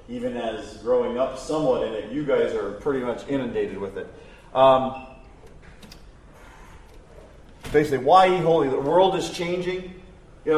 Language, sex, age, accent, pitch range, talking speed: English, male, 40-59, American, 135-185 Hz, 140 wpm